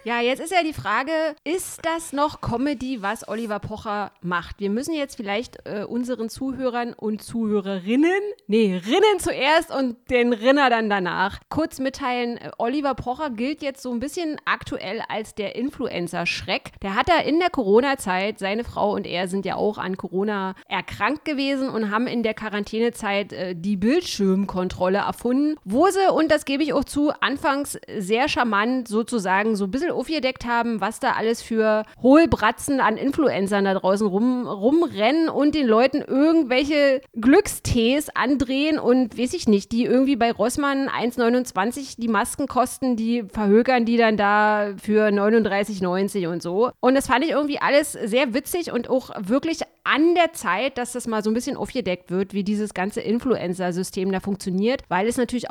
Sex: female